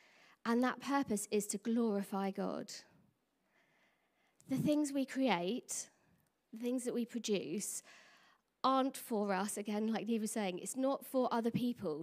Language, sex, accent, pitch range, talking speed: English, female, British, 205-260 Hz, 145 wpm